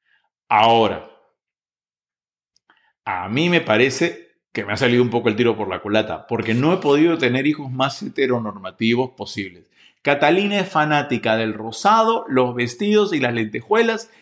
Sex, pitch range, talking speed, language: male, 115-160 Hz, 150 wpm, Spanish